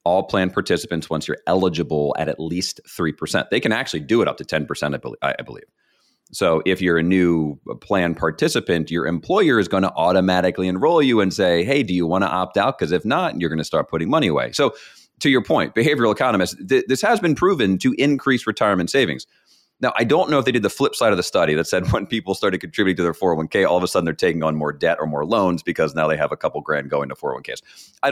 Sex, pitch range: male, 75-100 Hz